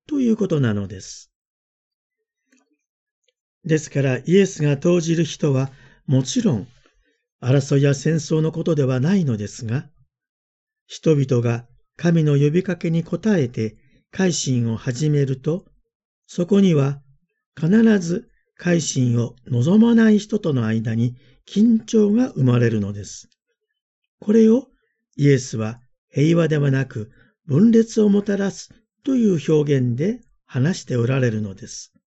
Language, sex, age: Japanese, male, 50-69